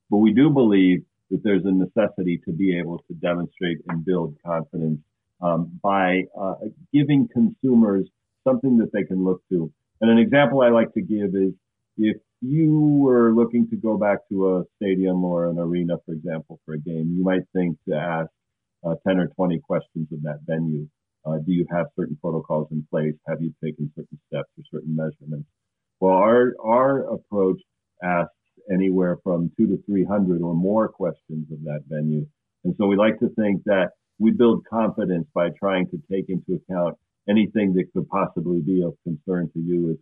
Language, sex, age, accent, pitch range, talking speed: English, male, 50-69, American, 80-100 Hz, 185 wpm